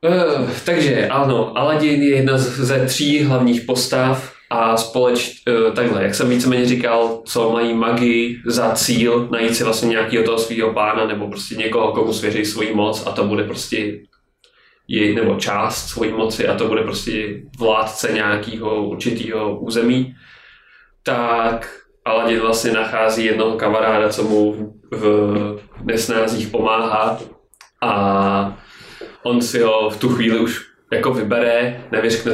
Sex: male